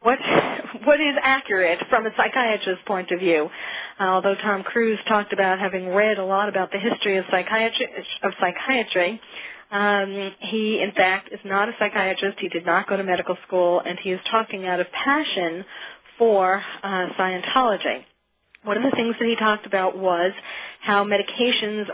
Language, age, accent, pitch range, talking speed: English, 40-59, American, 185-230 Hz, 170 wpm